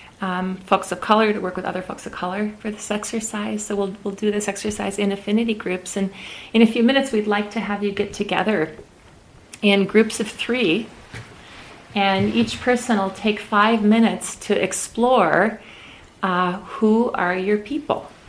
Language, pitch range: English, 180-220 Hz